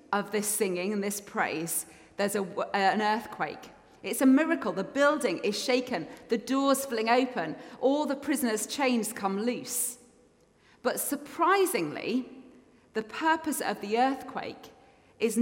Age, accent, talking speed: 30-49, British, 130 wpm